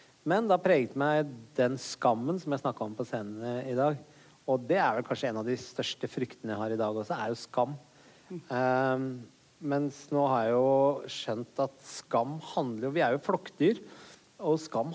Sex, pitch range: male, 125-145 Hz